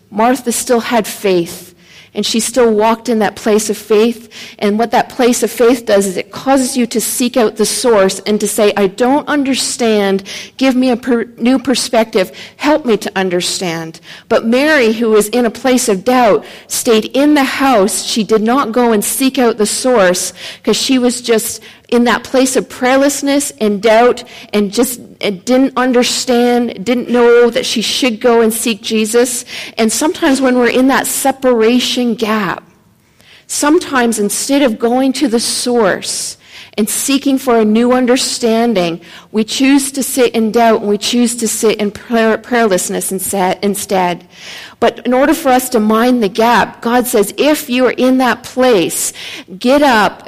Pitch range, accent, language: 210-255 Hz, American, English